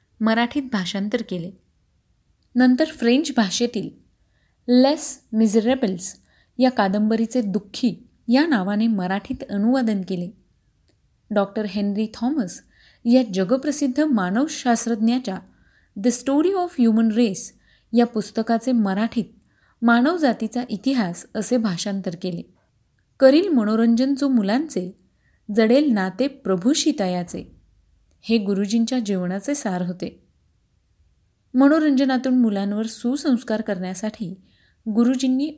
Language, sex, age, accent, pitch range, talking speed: Marathi, female, 30-49, native, 200-255 Hz, 90 wpm